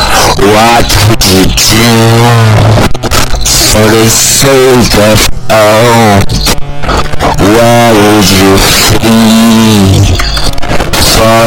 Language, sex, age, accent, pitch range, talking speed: English, male, 60-79, American, 110-140 Hz, 75 wpm